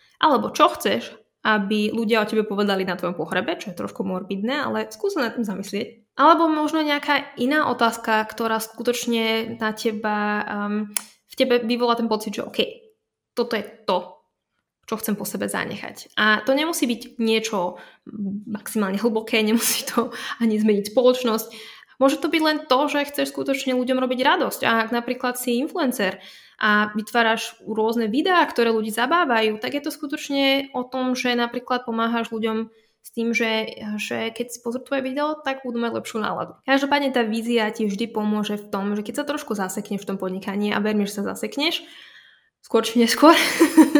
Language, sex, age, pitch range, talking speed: Slovak, female, 20-39, 215-265 Hz, 175 wpm